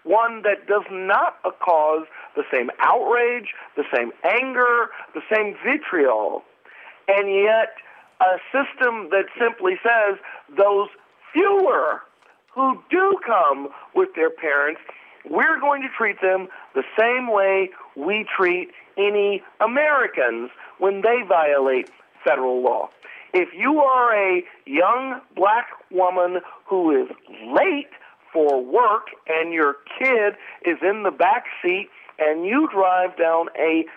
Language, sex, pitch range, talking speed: English, male, 180-275 Hz, 125 wpm